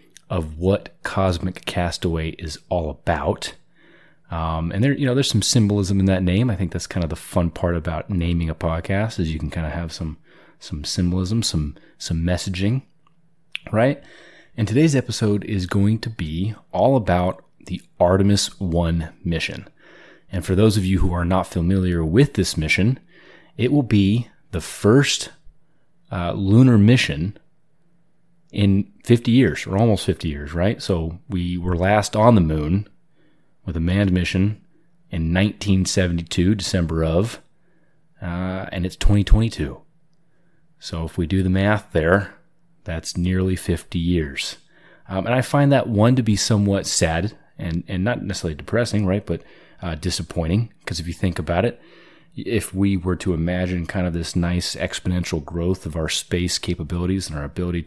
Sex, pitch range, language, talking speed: male, 85-110 Hz, English, 165 wpm